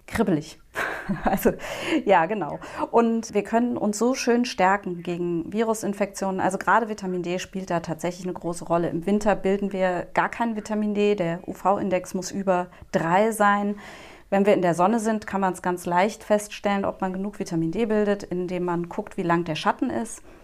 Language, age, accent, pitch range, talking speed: German, 30-49, German, 180-220 Hz, 185 wpm